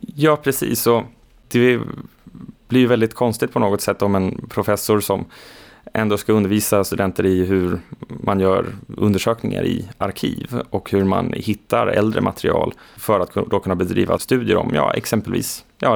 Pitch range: 95-110 Hz